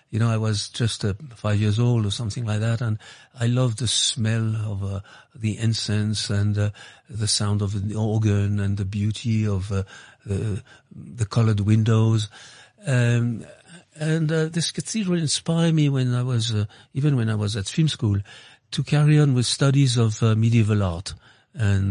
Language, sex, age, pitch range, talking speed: English, male, 50-69, 105-140 Hz, 180 wpm